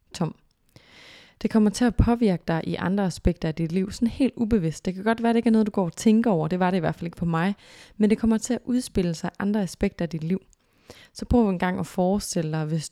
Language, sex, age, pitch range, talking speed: Danish, female, 20-39, 170-210 Hz, 270 wpm